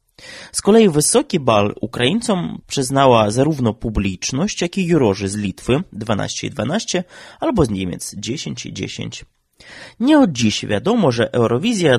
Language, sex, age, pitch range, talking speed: Polish, male, 20-39, 105-175 Hz, 125 wpm